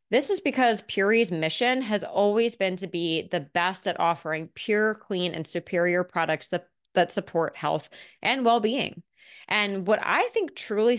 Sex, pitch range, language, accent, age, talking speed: female, 175-230 Hz, English, American, 20-39, 165 wpm